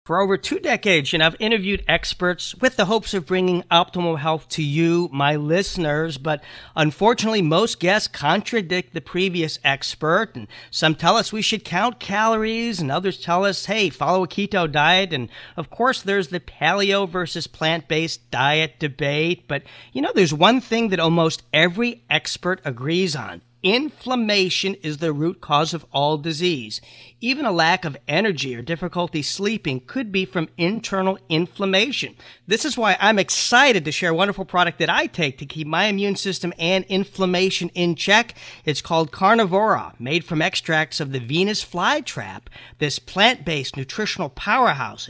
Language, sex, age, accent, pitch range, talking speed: English, male, 40-59, American, 155-200 Hz, 165 wpm